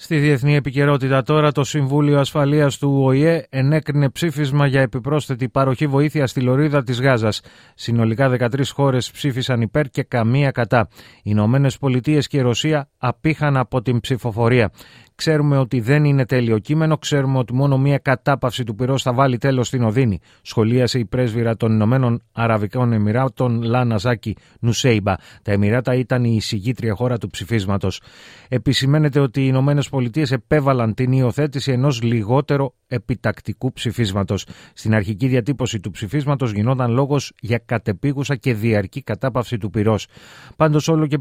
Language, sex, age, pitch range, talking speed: Greek, male, 30-49, 115-140 Hz, 145 wpm